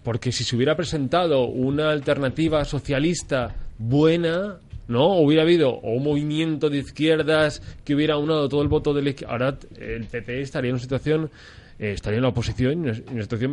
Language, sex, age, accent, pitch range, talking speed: Spanish, male, 30-49, Spanish, 120-155 Hz, 180 wpm